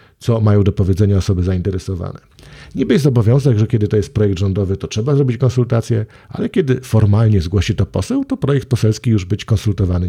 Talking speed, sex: 185 wpm, male